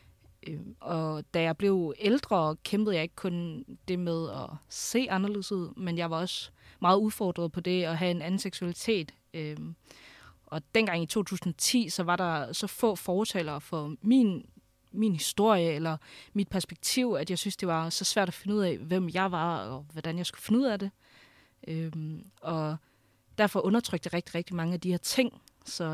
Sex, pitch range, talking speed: female, 160-195 Hz, 185 wpm